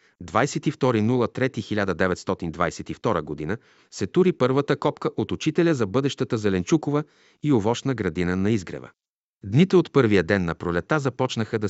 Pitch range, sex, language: 95-130 Hz, male, Bulgarian